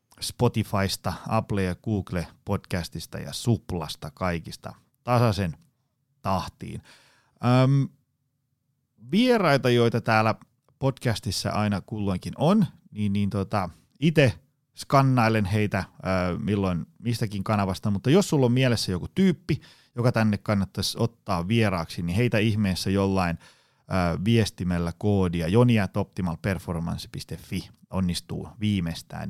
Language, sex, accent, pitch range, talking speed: Finnish, male, native, 95-125 Hz, 100 wpm